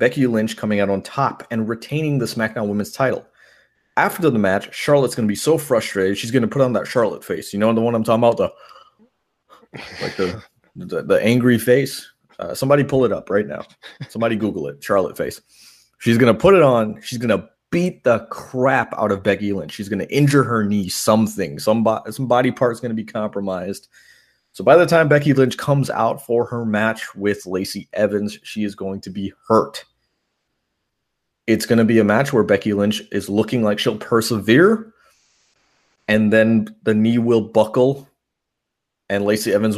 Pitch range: 100-120 Hz